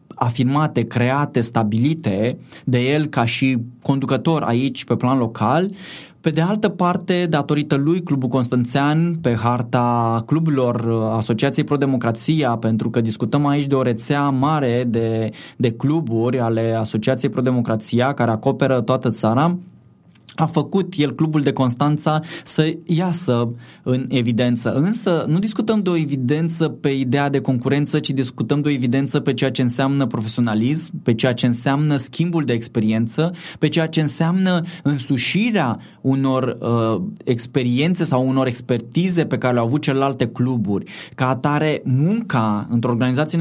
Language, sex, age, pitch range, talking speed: Romanian, male, 20-39, 120-150 Hz, 140 wpm